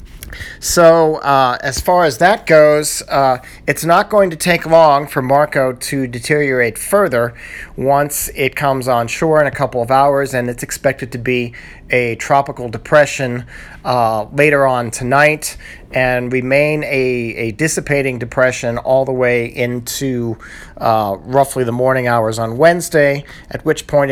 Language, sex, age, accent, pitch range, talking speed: English, male, 40-59, American, 120-150 Hz, 150 wpm